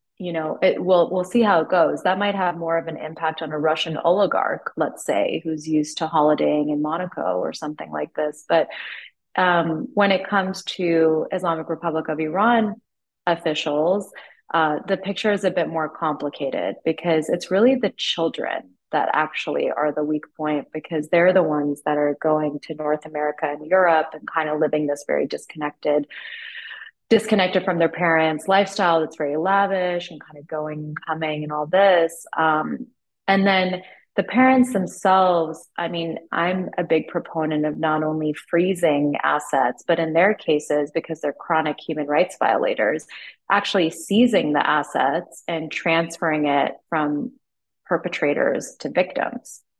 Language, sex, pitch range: English, female, 155-185 Hz